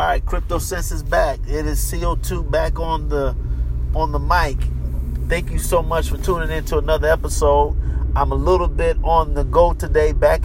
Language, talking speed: English, 190 wpm